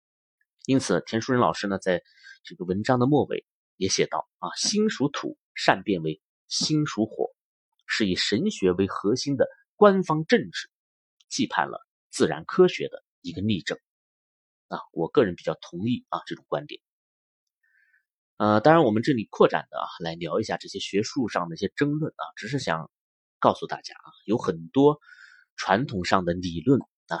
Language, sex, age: Chinese, male, 30-49